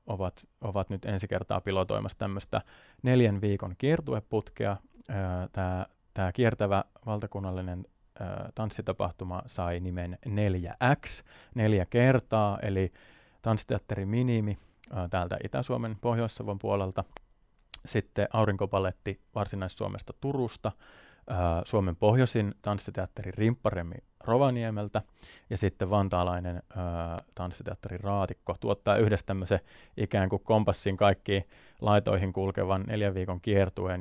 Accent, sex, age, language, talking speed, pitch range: native, male, 30-49, Finnish, 95 wpm, 90-110 Hz